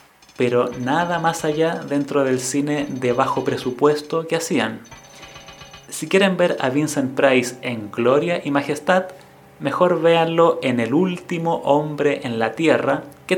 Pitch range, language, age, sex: 125-150 Hz, Spanish, 30-49, male